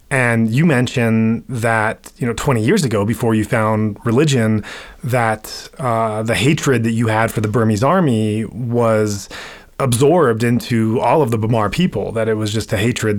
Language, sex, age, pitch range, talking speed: English, male, 30-49, 110-130 Hz, 175 wpm